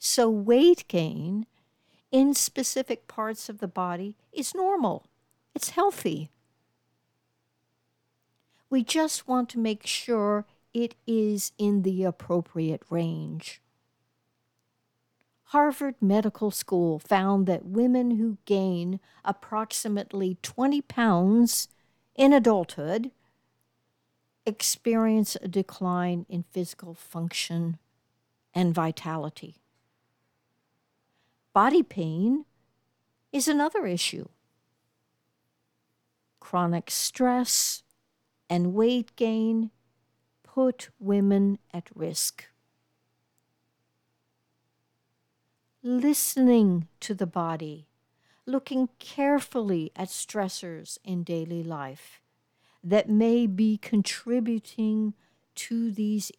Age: 60-79